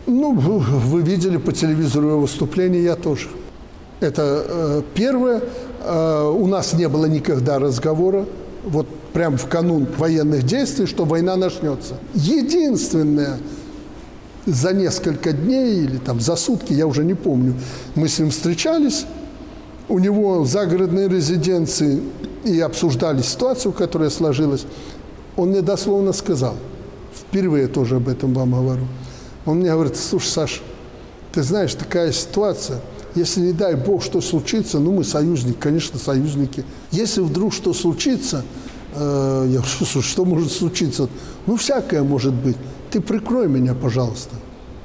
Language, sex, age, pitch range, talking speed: Russian, male, 60-79, 140-185 Hz, 140 wpm